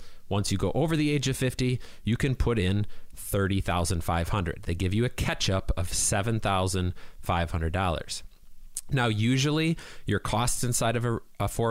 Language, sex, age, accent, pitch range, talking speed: English, male, 30-49, American, 95-120 Hz, 145 wpm